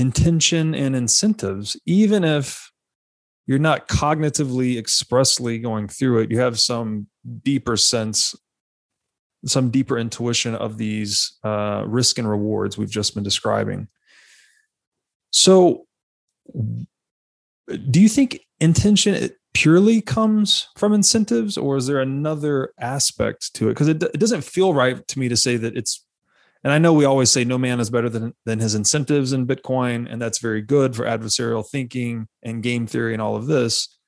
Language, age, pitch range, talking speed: English, 30-49, 115-150 Hz, 155 wpm